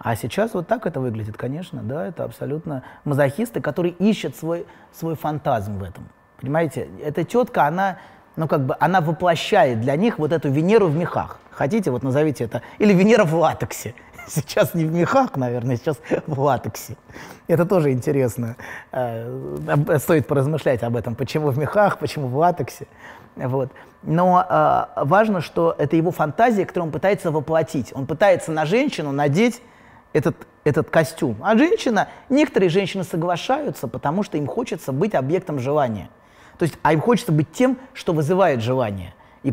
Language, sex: Russian, male